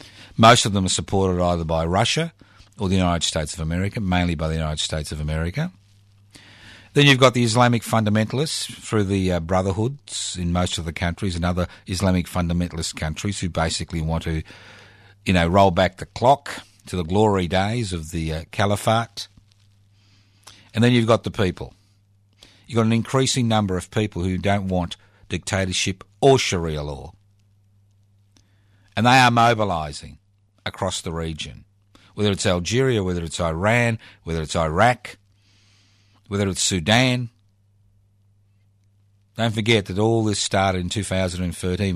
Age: 50-69